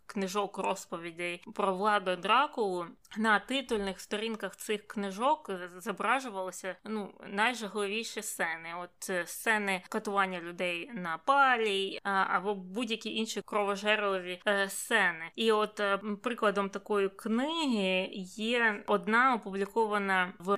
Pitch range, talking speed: 195-220 Hz, 95 wpm